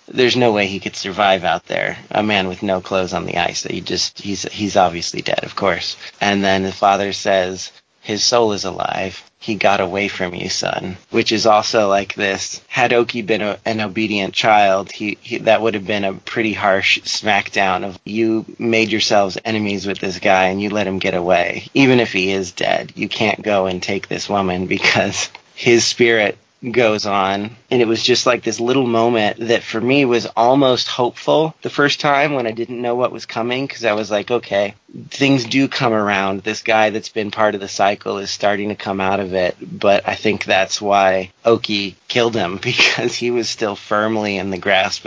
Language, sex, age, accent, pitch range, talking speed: English, male, 30-49, American, 95-115 Hz, 210 wpm